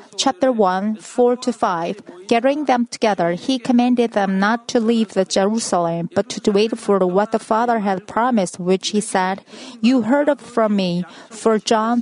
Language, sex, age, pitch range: Korean, female, 40-59, 195-250 Hz